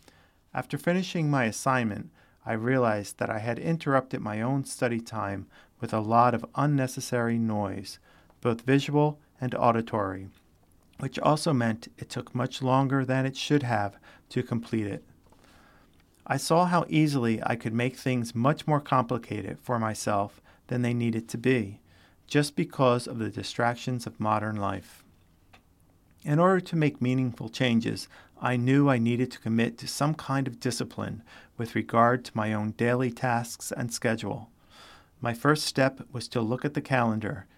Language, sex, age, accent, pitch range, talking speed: English, male, 40-59, American, 110-135 Hz, 160 wpm